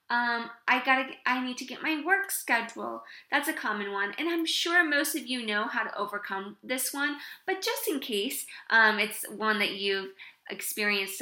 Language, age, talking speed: English, 20-39, 195 wpm